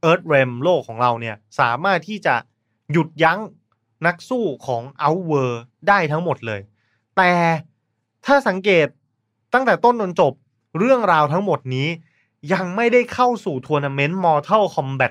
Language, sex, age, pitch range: Thai, male, 20-39, 130-190 Hz